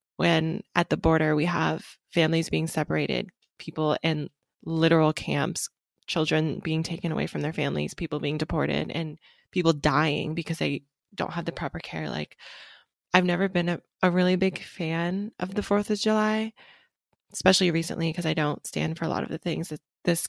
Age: 20-39